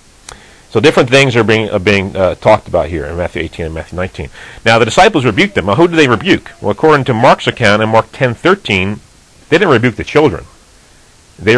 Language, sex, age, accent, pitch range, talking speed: English, male, 40-59, American, 90-120 Hz, 220 wpm